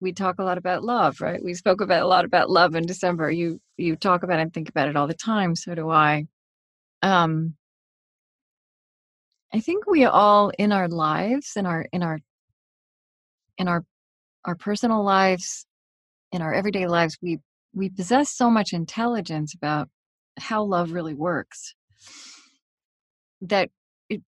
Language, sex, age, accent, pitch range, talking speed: English, female, 40-59, American, 170-215 Hz, 160 wpm